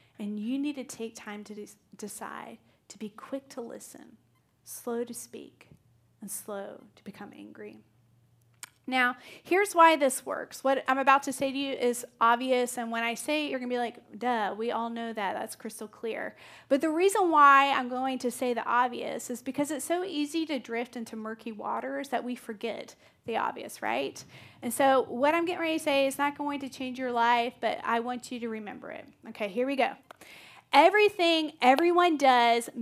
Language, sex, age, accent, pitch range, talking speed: English, female, 30-49, American, 235-300 Hz, 195 wpm